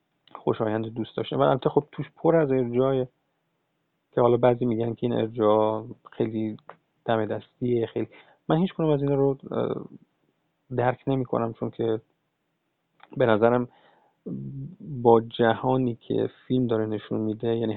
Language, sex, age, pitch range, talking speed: Persian, male, 40-59, 115-135 Hz, 130 wpm